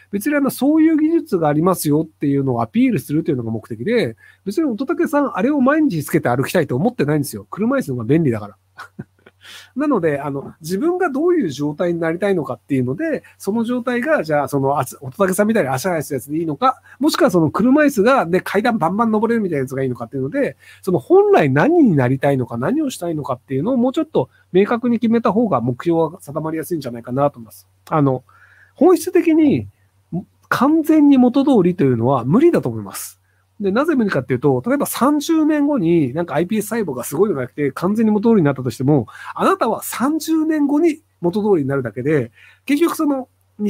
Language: Japanese